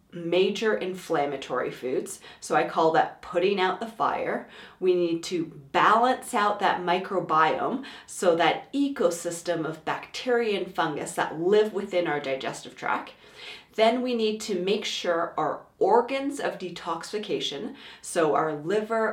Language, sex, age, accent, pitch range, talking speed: English, female, 30-49, American, 170-230 Hz, 140 wpm